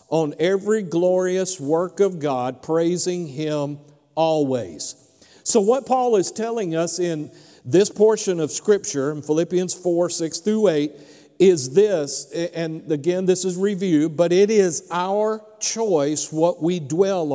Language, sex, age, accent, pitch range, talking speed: English, male, 50-69, American, 145-185 Hz, 140 wpm